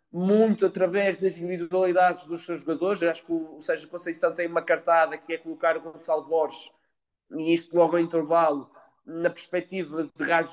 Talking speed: 170 wpm